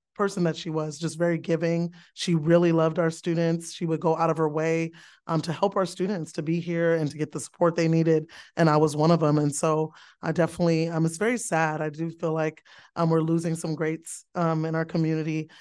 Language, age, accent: English, 30-49, American